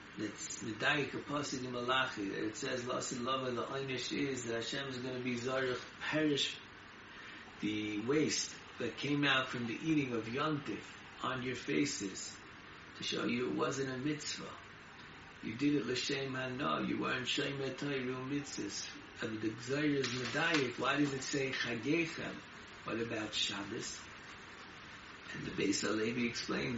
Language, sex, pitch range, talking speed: English, male, 110-140 Hz, 155 wpm